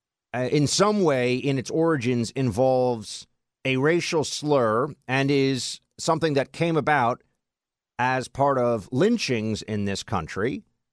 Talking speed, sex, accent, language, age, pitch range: 125 wpm, male, American, English, 50-69, 130-185 Hz